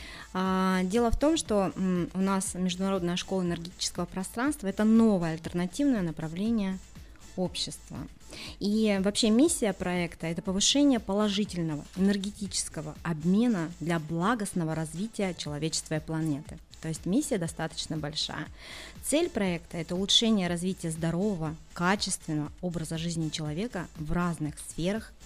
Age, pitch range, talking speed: 30-49, 165-205 Hz, 115 wpm